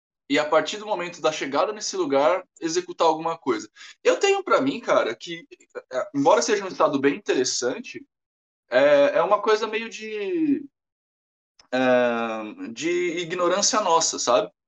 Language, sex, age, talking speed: Portuguese, male, 20-39, 140 wpm